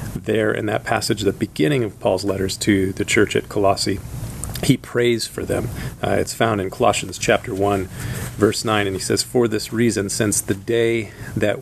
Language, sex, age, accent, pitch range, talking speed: English, male, 40-59, American, 100-120 Hz, 190 wpm